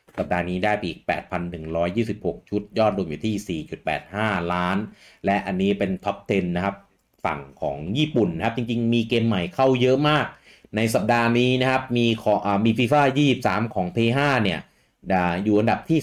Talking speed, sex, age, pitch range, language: 50 wpm, male, 30-49, 95-120 Hz, English